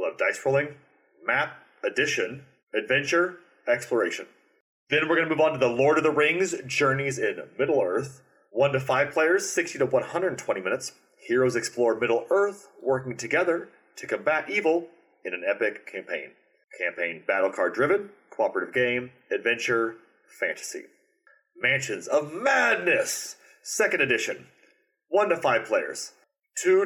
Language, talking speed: English, 145 wpm